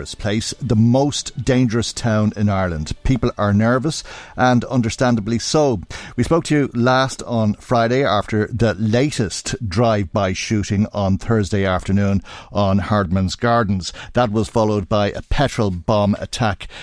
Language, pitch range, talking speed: English, 95-115 Hz, 140 wpm